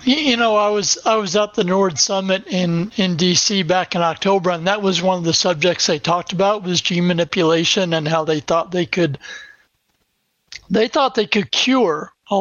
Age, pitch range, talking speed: 60-79, 175-205 Hz, 200 wpm